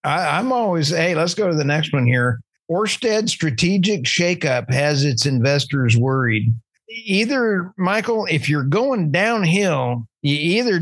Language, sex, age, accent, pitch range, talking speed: English, male, 50-69, American, 125-160 Hz, 140 wpm